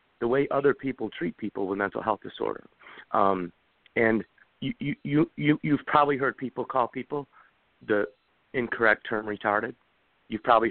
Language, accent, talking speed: English, American, 150 wpm